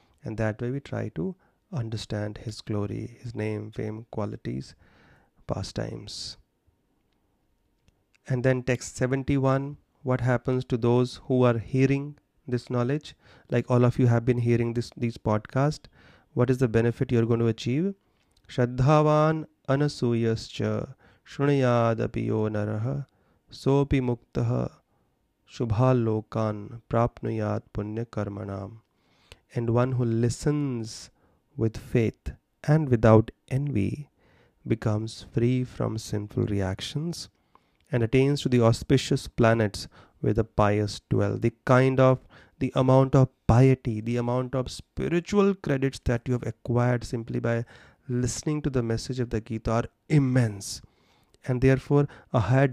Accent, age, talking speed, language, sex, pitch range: Indian, 30-49, 115 wpm, English, male, 110-130 Hz